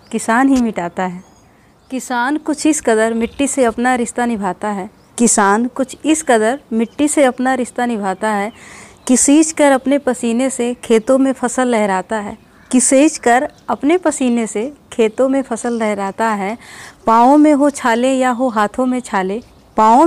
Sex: female